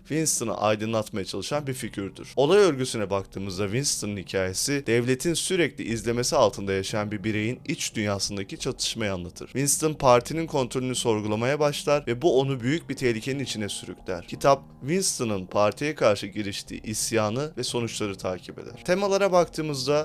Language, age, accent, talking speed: Turkish, 30-49, native, 140 wpm